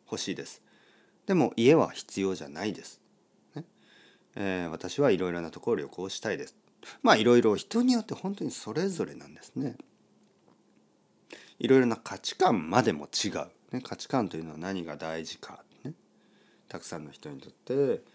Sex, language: male, Japanese